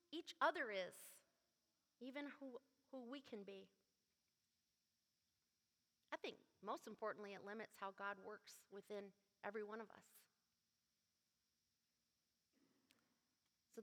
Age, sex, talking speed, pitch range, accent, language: 40-59, female, 105 wpm, 200-260 Hz, American, English